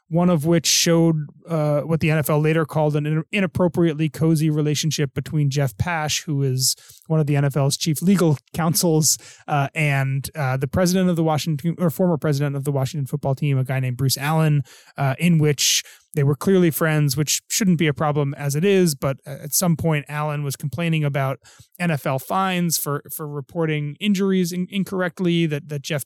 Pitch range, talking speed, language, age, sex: 140-165 Hz, 185 wpm, English, 20-39, male